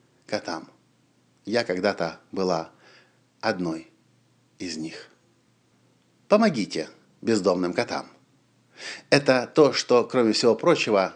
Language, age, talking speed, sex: Russian, 50-69, 85 wpm, male